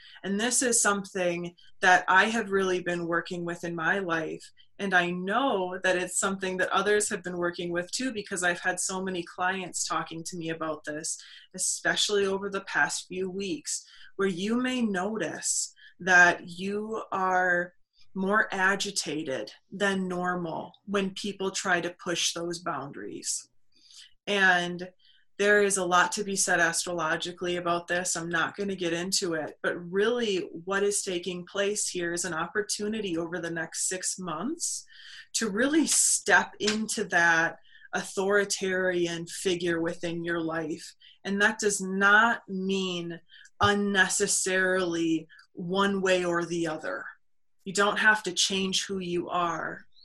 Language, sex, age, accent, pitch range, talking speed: English, female, 20-39, American, 175-200 Hz, 150 wpm